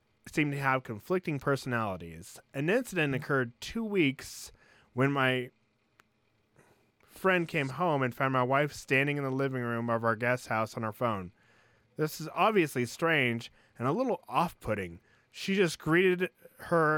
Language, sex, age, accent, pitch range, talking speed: English, male, 20-39, American, 120-140 Hz, 150 wpm